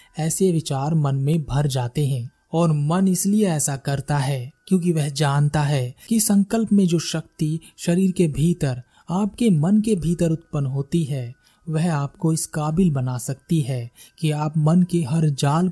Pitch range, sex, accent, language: 145-185 Hz, male, native, Hindi